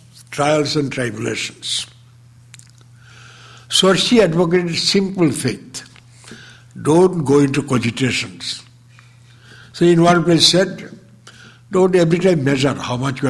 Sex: male